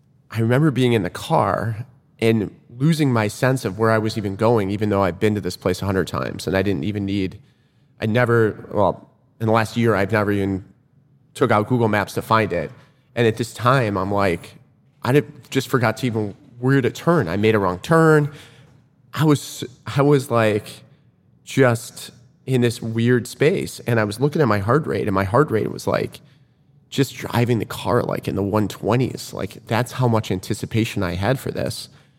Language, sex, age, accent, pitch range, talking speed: English, male, 30-49, American, 105-130 Hz, 200 wpm